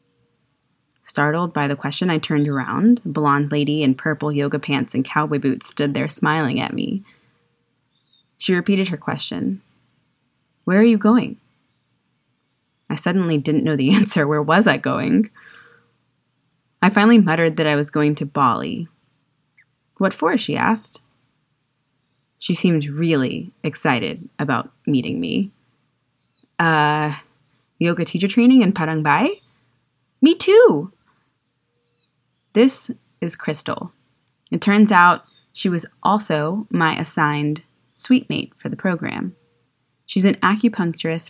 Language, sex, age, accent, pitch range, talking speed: English, female, 20-39, American, 145-190 Hz, 125 wpm